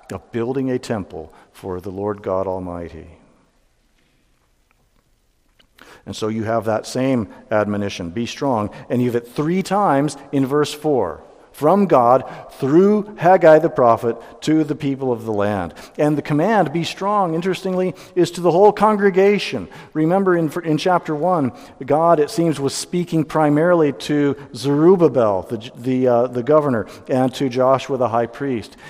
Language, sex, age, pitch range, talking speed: English, male, 50-69, 120-170 Hz, 155 wpm